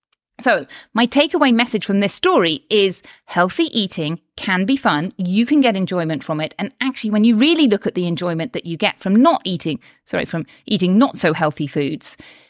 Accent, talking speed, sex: British, 195 wpm, female